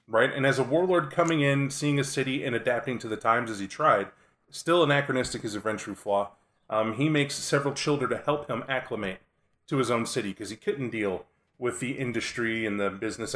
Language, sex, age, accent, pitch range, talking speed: English, male, 30-49, American, 110-140 Hz, 210 wpm